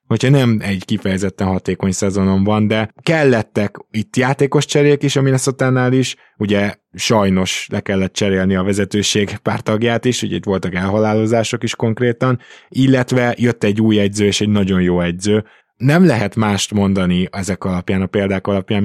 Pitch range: 95-115 Hz